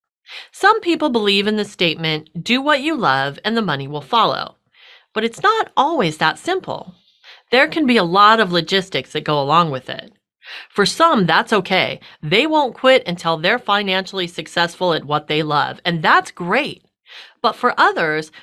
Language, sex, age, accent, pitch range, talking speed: English, female, 40-59, American, 165-255 Hz, 175 wpm